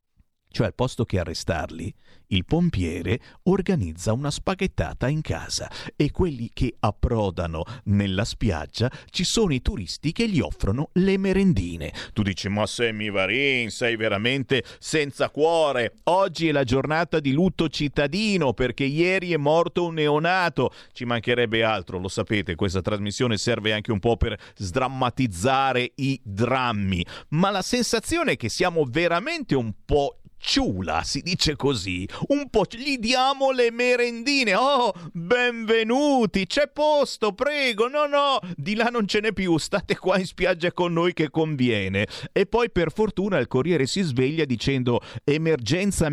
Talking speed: 150 wpm